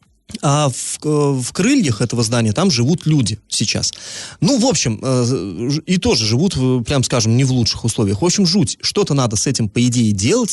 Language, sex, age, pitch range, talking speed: Russian, male, 20-39, 115-150 Hz, 180 wpm